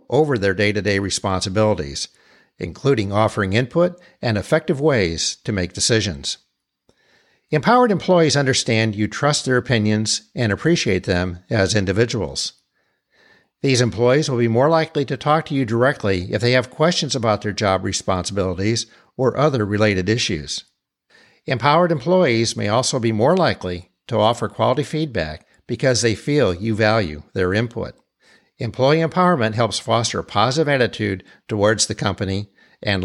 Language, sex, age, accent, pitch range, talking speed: English, male, 60-79, American, 105-150 Hz, 140 wpm